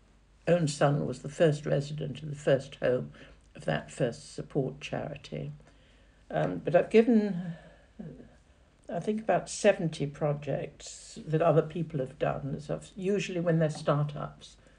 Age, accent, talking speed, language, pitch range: 60-79, British, 145 wpm, English, 135-165 Hz